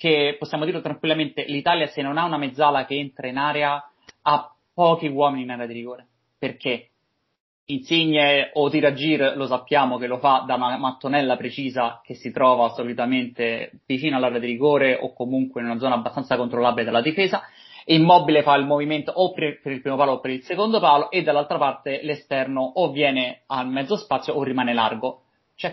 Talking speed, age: 185 wpm, 20-39